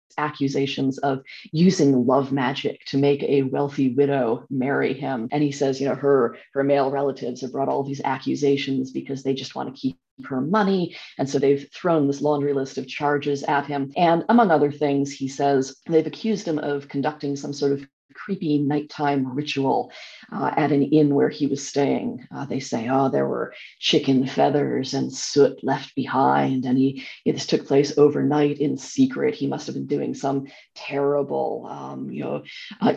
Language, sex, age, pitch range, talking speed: English, female, 40-59, 140-165 Hz, 185 wpm